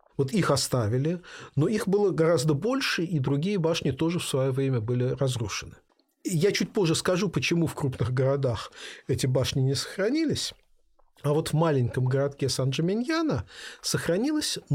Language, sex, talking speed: Russian, male, 145 wpm